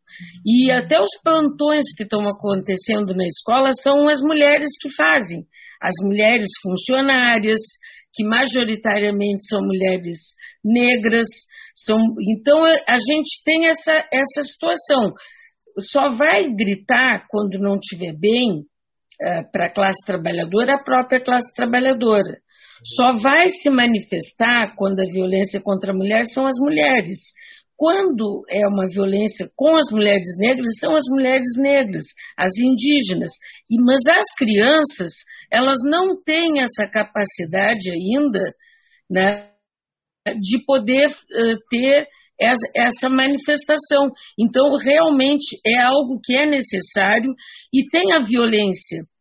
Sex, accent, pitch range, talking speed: female, Brazilian, 205-285 Hz, 120 wpm